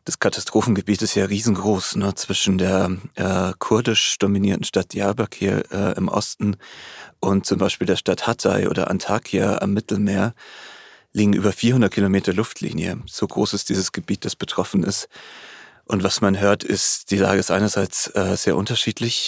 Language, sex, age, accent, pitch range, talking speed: German, male, 30-49, German, 95-105 Hz, 160 wpm